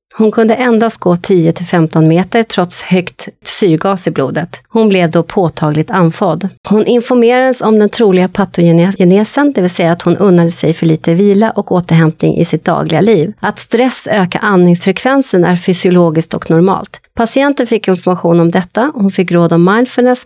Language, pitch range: Swedish, 170-220 Hz